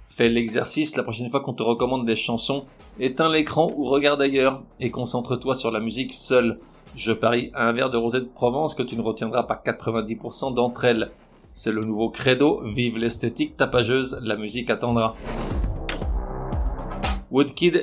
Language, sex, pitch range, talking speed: French, male, 115-135 Hz, 160 wpm